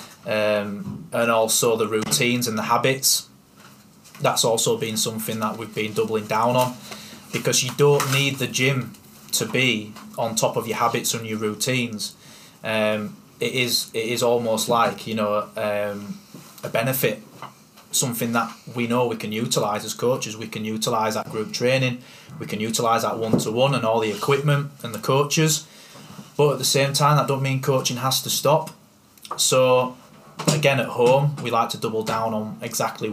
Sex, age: male, 20-39